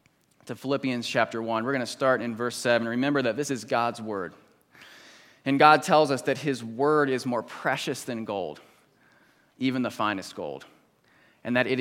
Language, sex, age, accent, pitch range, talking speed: English, male, 30-49, American, 115-140 Hz, 185 wpm